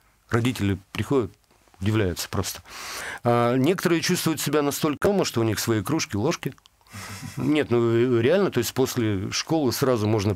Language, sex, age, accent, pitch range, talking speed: Russian, male, 50-69, native, 105-145 Hz, 140 wpm